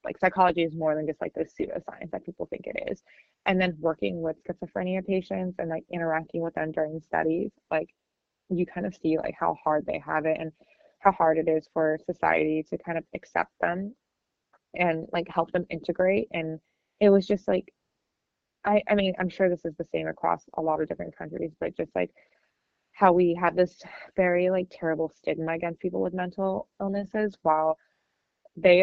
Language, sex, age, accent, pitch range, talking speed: English, female, 20-39, American, 160-185 Hz, 195 wpm